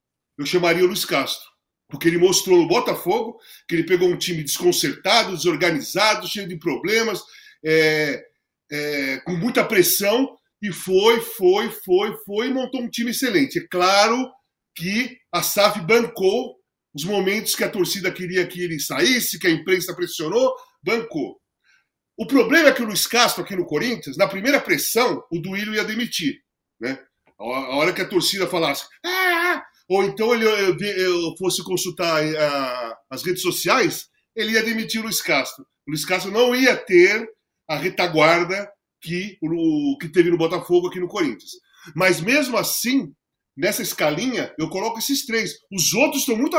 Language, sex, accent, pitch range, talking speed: Portuguese, male, Brazilian, 175-250 Hz, 155 wpm